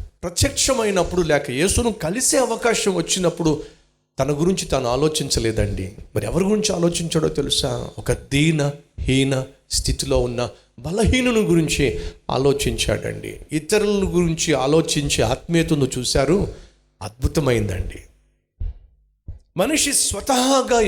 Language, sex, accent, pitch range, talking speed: Telugu, male, native, 105-165 Hz, 90 wpm